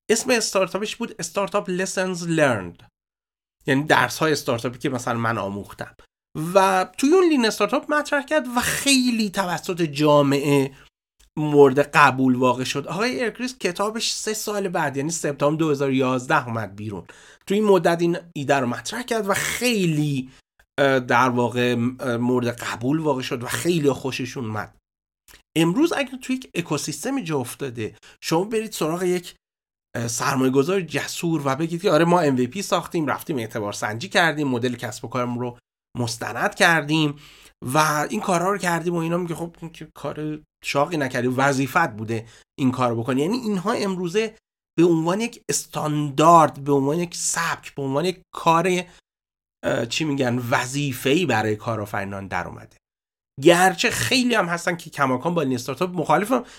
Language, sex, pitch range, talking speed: Persian, male, 130-190 Hz, 155 wpm